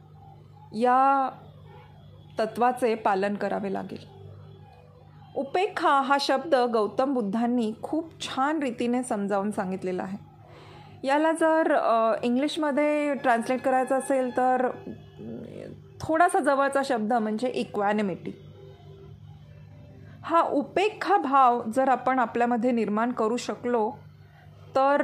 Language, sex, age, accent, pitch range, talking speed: Marathi, female, 30-49, native, 225-275 Hz, 90 wpm